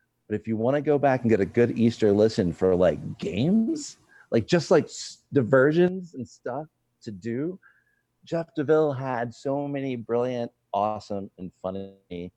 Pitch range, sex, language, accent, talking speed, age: 90-135 Hz, male, English, American, 160 wpm, 40-59